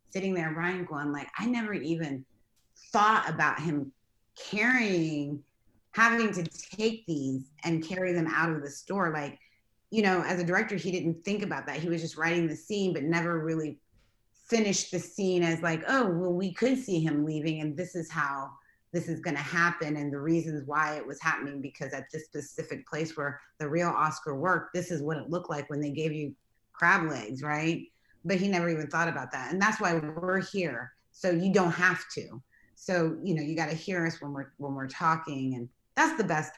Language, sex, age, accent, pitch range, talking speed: English, female, 30-49, American, 150-180 Hz, 205 wpm